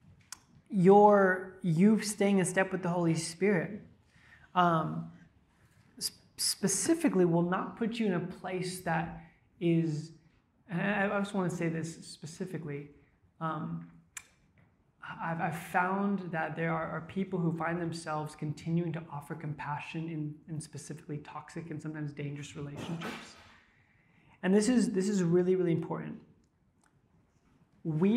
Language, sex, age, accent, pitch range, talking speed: English, male, 20-39, American, 155-190 Hz, 130 wpm